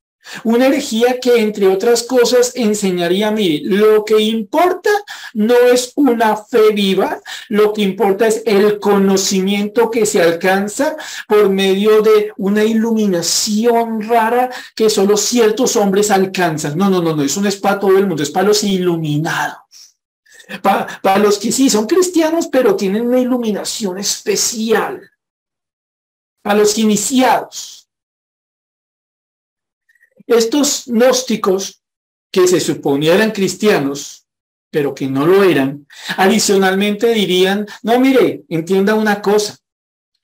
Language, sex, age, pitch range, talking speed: Spanish, male, 50-69, 190-245 Hz, 125 wpm